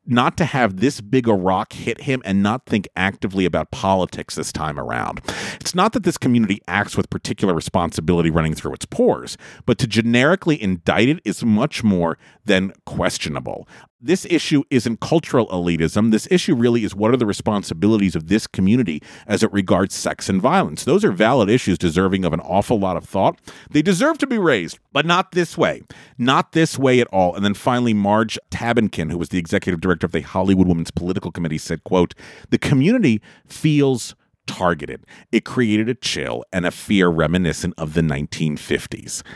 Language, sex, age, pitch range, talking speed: English, male, 40-59, 90-130 Hz, 185 wpm